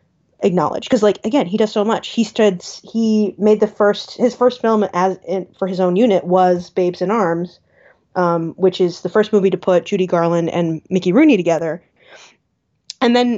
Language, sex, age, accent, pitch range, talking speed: English, female, 20-39, American, 180-220 Hz, 195 wpm